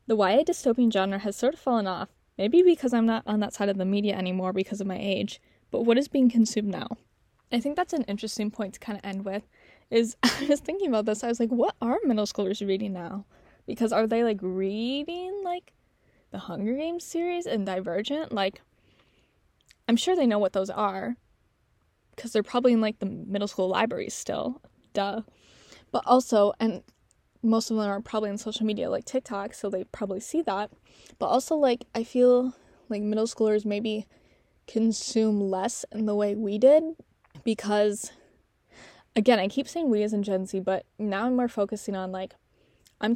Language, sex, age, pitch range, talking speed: English, female, 10-29, 200-245 Hz, 195 wpm